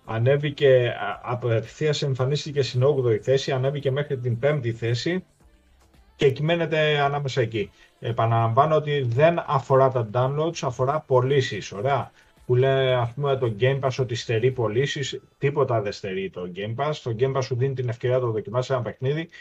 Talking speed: 160 wpm